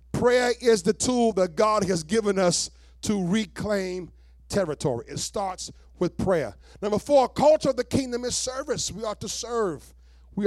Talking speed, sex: 165 wpm, male